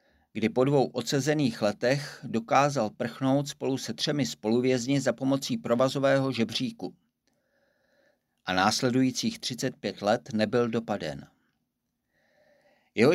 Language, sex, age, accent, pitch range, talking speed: Czech, male, 50-69, native, 115-140 Hz, 100 wpm